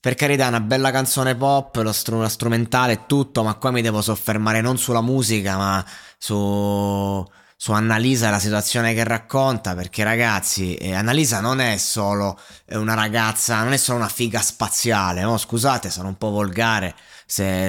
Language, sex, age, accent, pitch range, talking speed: Italian, male, 20-39, native, 100-125 Hz, 165 wpm